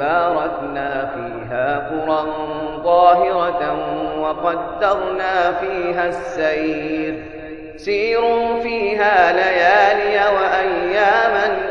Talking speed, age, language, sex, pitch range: 55 wpm, 30-49, Arabic, female, 155-200 Hz